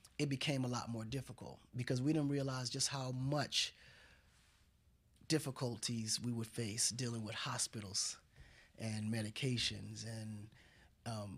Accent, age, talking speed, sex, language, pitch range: American, 20-39, 125 wpm, male, English, 115-150 Hz